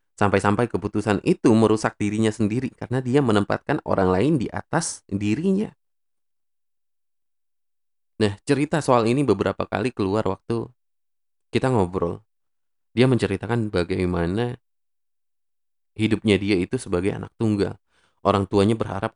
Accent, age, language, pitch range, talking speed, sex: native, 20-39, Indonesian, 100-125 Hz, 115 wpm, male